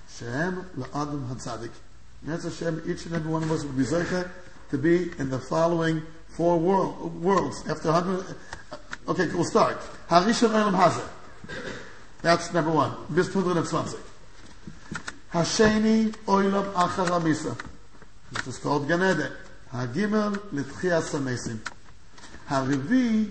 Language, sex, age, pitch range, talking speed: English, male, 50-69, 150-200 Hz, 120 wpm